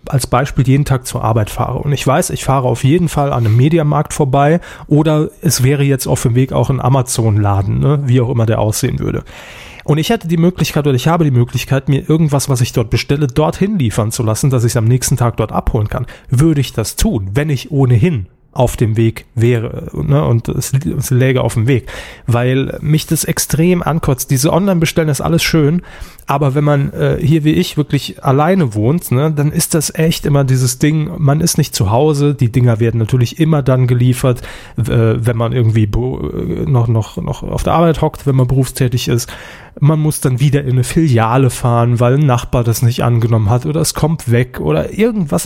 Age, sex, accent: 30-49, male, German